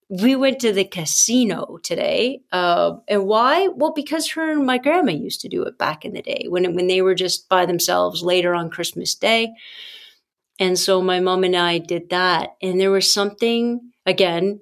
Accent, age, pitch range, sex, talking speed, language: American, 40-59, 180-225 Hz, female, 195 wpm, English